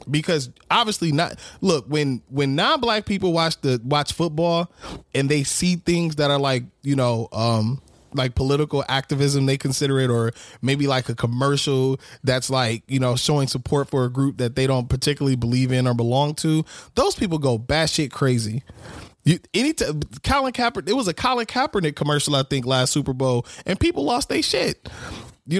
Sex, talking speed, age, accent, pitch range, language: male, 180 wpm, 20-39, American, 120-150 Hz, English